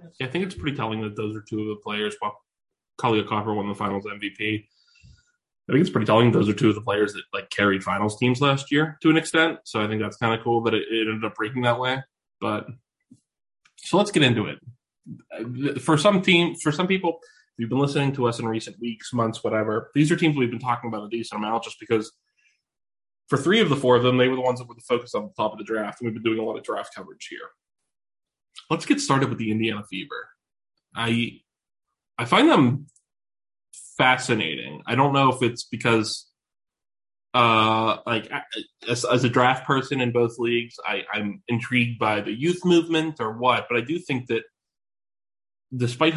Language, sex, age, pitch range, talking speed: English, male, 20-39, 110-140 Hz, 215 wpm